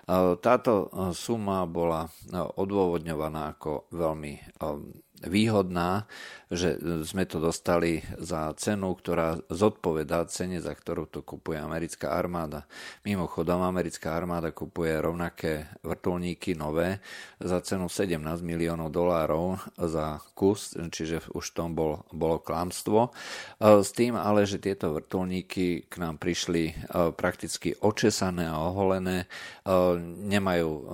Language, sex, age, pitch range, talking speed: Slovak, male, 50-69, 80-95 Hz, 110 wpm